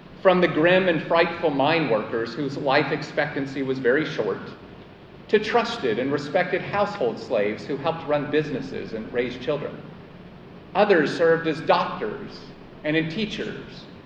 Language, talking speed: English, 140 wpm